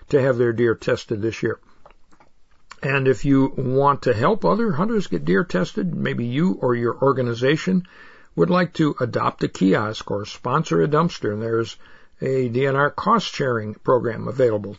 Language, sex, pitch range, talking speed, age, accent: English, male, 120-165 Hz, 160 wpm, 60-79, American